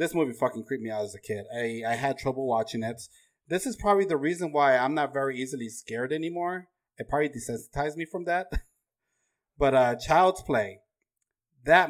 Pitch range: 115-170 Hz